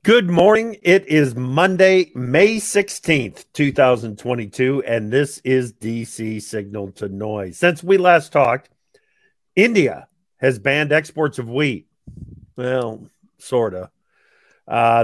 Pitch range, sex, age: 125-190 Hz, male, 50-69